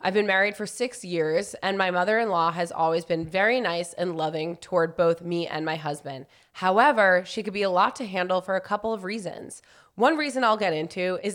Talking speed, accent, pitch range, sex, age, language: 215 wpm, American, 165-200 Hz, female, 20-39, English